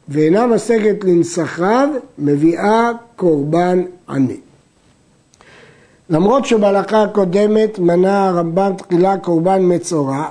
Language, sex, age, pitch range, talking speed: Hebrew, male, 60-79, 165-215 Hz, 80 wpm